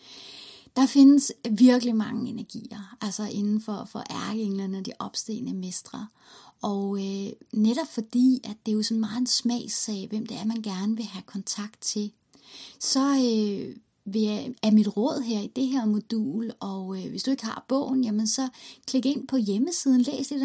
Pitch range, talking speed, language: 210-255 Hz, 175 wpm, Danish